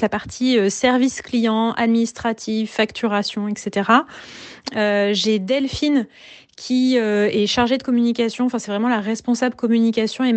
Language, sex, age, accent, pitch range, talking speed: French, female, 30-49, French, 205-240 Hz, 135 wpm